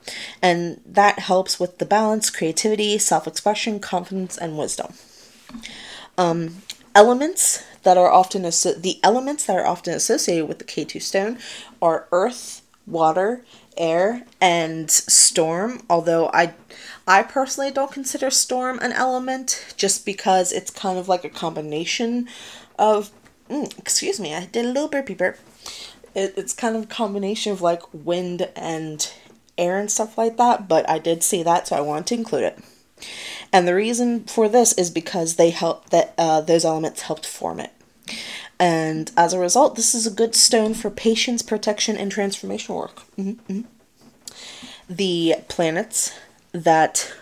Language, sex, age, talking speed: English, female, 20-39, 155 wpm